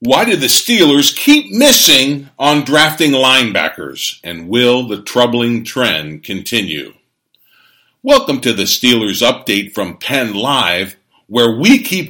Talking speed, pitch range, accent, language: 125 wpm, 110-155 Hz, American, English